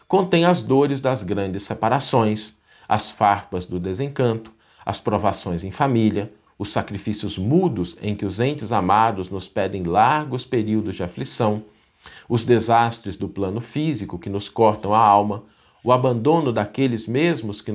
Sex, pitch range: male, 105-135 Hz